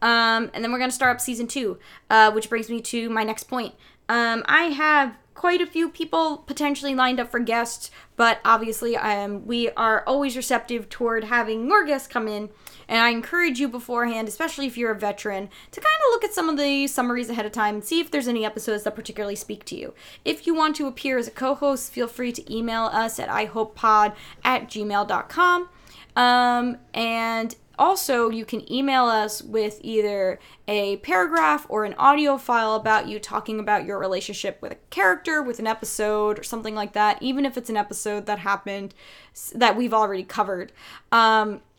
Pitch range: 210-255 Hz